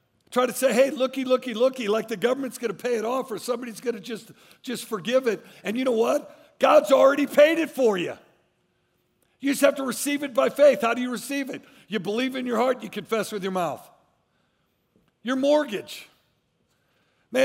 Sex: male